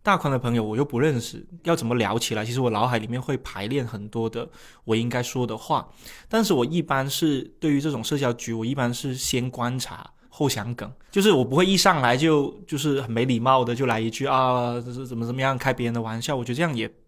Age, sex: 20-39, male